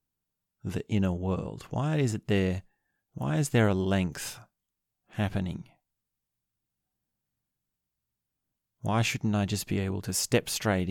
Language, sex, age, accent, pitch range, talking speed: English, male, 30-49, Australian, 95-115 Hz, 120 wpm